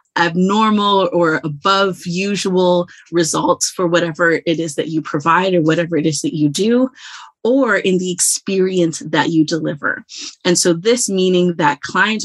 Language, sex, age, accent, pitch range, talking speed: English, female, 30-49, American, 160-195 Hz, 155 wpm